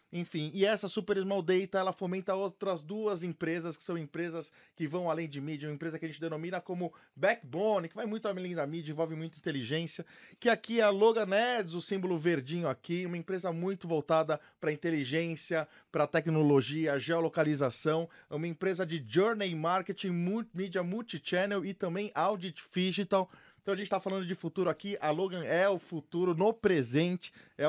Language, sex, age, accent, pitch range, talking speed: Portuguese, male, 20-39, Brazilian, 155-195 Hz, 175 wpm